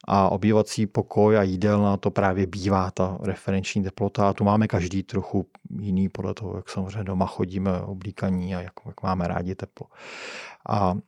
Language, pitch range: Czech, 100-125 Hz